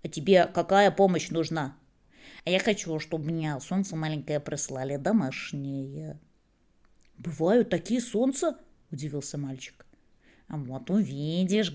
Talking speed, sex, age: 110 wpm, female, 20-39